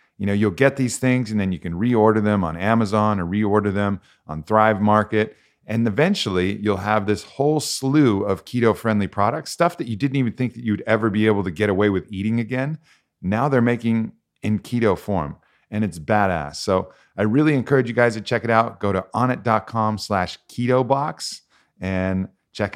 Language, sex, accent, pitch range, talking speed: English, male, American, 95-120 Hz, 200 wpm